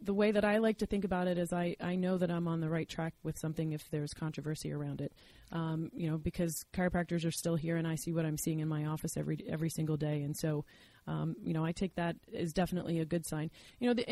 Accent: American